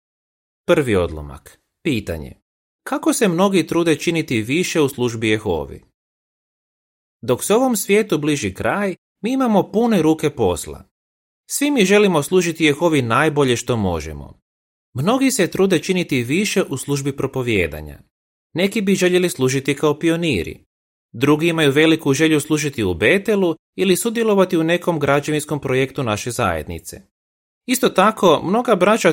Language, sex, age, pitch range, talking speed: Croatian, male, 30-49, 115-180 Hz, 130 wpm